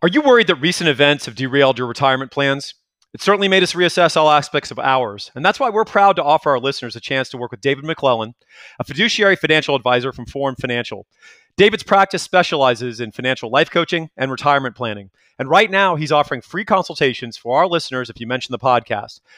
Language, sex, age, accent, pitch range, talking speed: English, male, 40-59, American, 125-175 Hz, 210 wpm